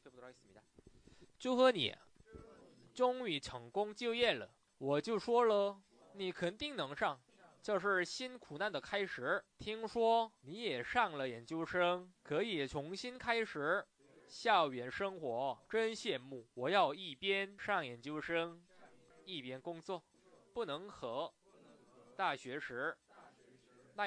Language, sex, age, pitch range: Korean, male, 20-39, 160-235 Hz